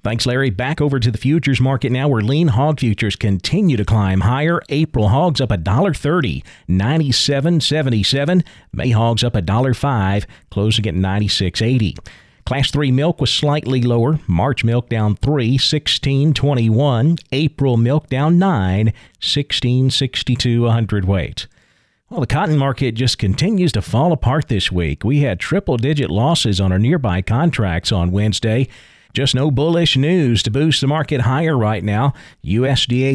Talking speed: 145 wpm